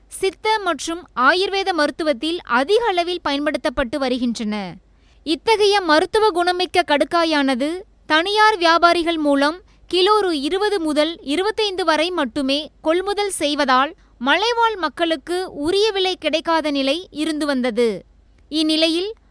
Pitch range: 290-370 Hz